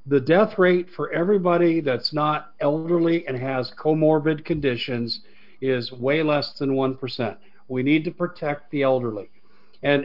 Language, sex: English, male